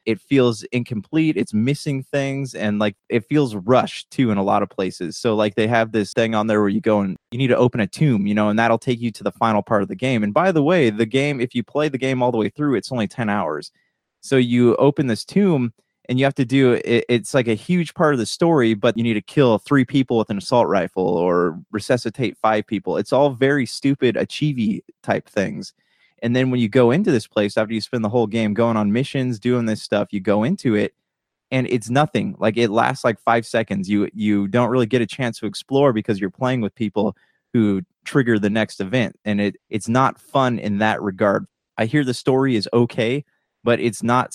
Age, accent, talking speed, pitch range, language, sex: 20-39, American, 240 wpm, 105-130 Hz, English, male